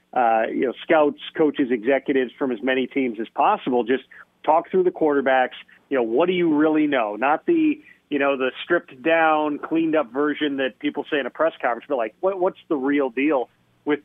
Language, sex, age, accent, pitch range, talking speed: English, male, 40-59, American, 130-160 Hz, 210 wpm